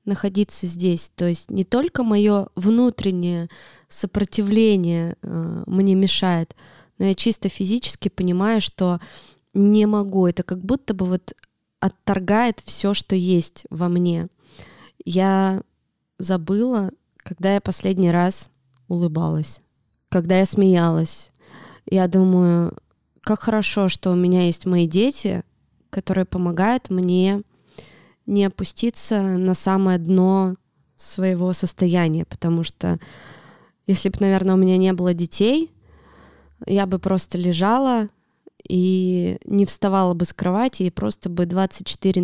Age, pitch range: 20-39, 175-200 Hz